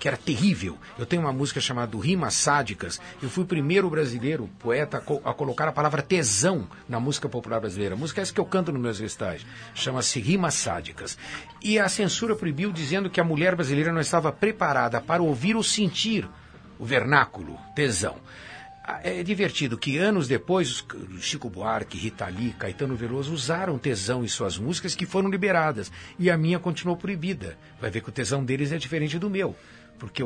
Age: 60-79